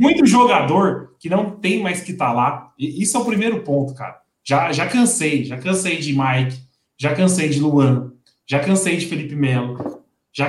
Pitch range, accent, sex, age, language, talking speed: 145-205 Hz, Brazilian, male, 20-39, Portuguese, 190 wpm